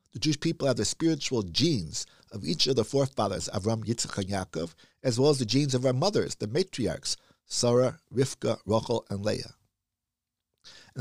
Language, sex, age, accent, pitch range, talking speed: English, male, 50-69, American, 105-145 Hz, 175 wpm